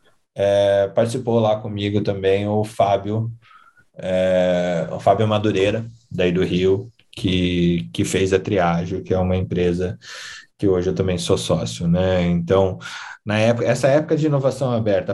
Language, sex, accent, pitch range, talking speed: Portuguese, male, Brazilian, 95-115 Hz, 150 wpm